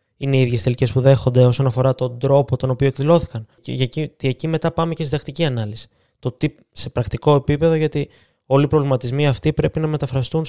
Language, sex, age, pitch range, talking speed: Greek, male, 20-39, 125-160 Hz, 205 wpm